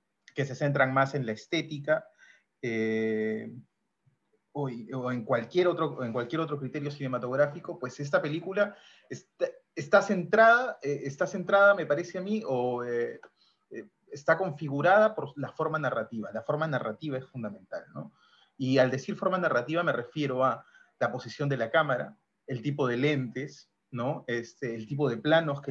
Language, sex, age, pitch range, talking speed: Spanish, male, 30-49, 125-160 Hz, 160 wpm